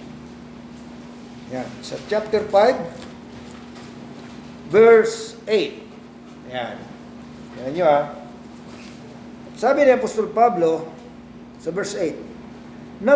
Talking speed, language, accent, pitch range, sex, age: 85 wpm, English, Filipino, 215-265 Hz, male, 50-69